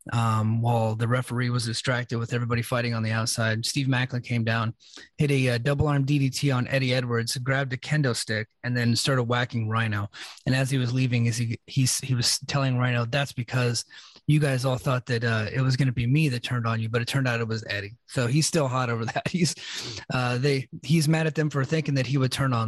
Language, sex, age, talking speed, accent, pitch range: English, male, 30-49, 240 wpm, American, 115-140 Hz